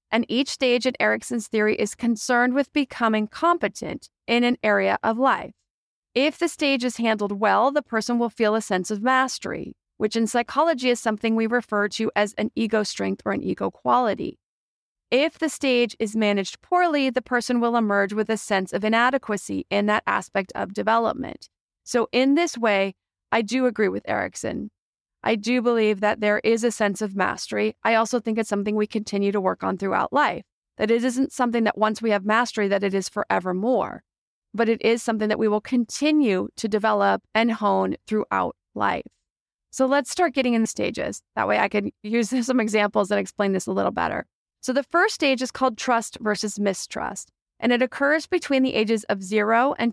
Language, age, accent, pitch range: English, 30-49, American, 210-255 Hz